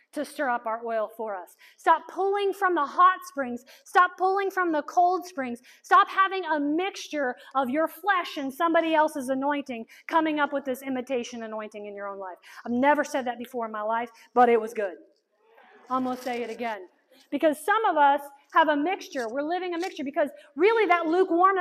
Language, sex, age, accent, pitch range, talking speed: English, female, 40-59, American, 280-375 Hz, 205 wpm